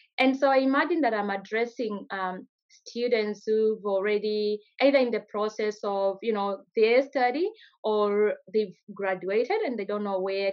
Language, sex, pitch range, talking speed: English, female, 205-300 Hz, 160 wpm